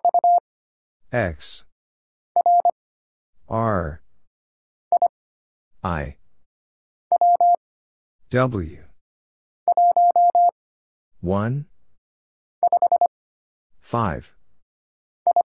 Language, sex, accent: English, male, American